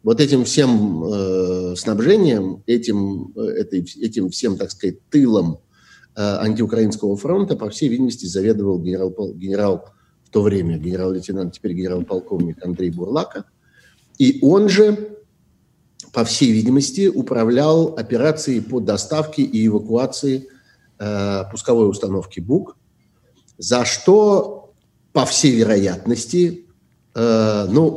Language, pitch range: Russian, 100-140 Hz